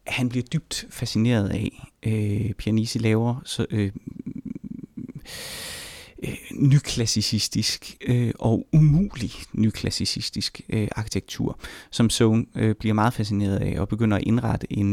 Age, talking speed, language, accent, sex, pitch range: 30-49, 115 wpm, Danish, native, male, 105-125 Hz